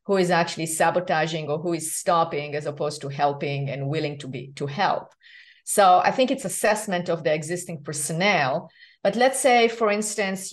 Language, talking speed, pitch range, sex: English, 185 wpm, 160-200 Hz, female